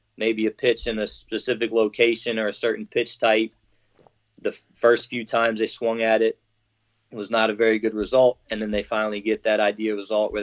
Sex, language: male, English